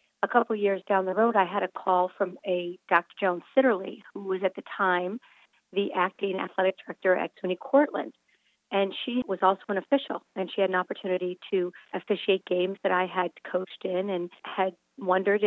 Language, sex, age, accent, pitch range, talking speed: English, female, 40-59, American, 185-215 Hz, 195 wpm